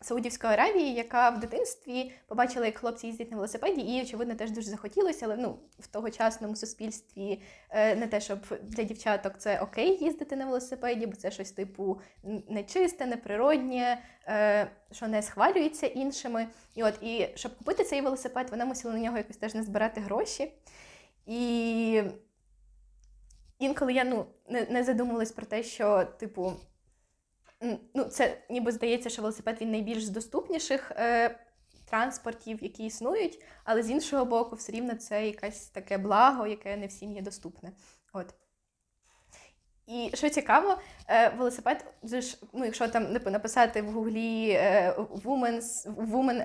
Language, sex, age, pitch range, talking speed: Ukrainian, female, 20-39, 210-250 Hz, 140 wpm